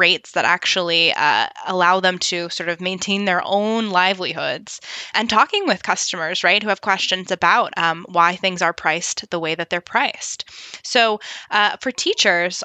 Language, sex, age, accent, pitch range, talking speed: English, female, 20-39, American, 170-205 Hz, 170 wpm